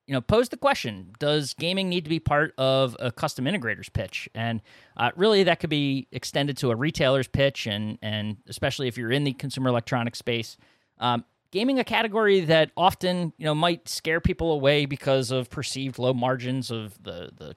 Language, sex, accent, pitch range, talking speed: English, male, American, 120-150 Hz, 195 wpm